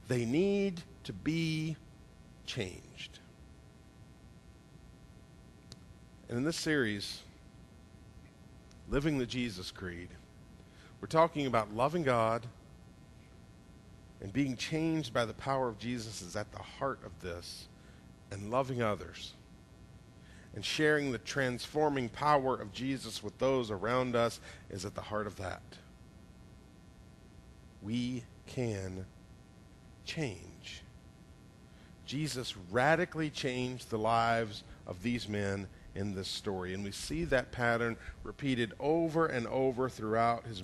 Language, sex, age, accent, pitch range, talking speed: English, male, 50-69, American, 95-140 Hz, 115 wpm